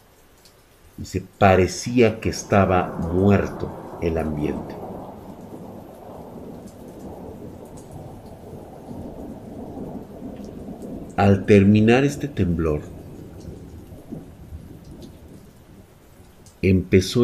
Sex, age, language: male, 50-69, Spanish